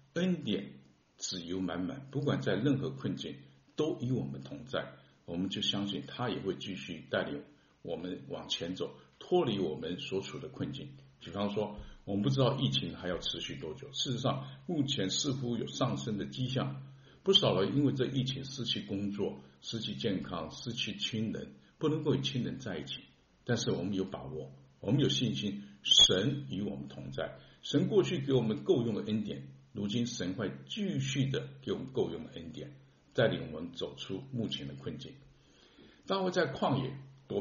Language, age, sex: Chinese, 50-69, male